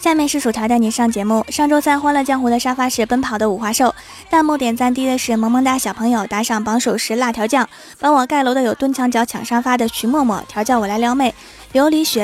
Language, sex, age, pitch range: Chinese, female, 20-39, 225-265 Hz